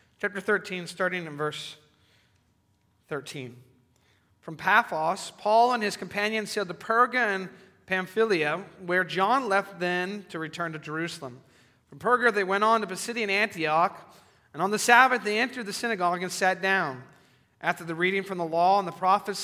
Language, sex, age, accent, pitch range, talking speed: English, male, 40-59, American, 165-205 Hz, 165 wpm